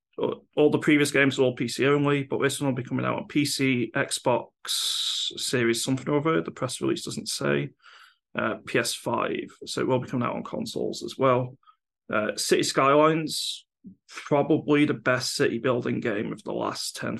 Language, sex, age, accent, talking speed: English, male, 30-49, British, 180 wpm